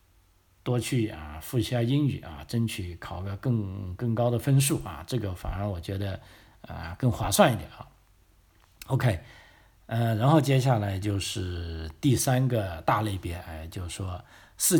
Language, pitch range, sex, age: Chinese, 95-120 Hz, male, 50-69